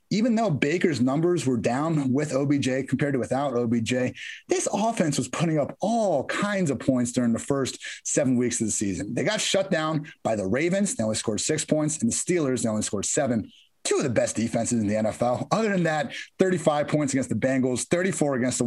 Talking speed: 215 wpm